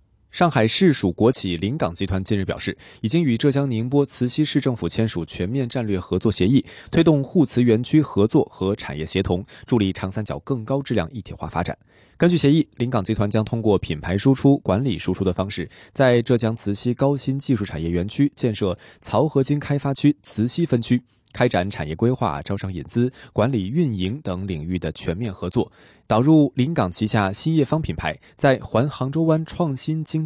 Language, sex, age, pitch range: Chinese, male, 20-39, 95-135 Hz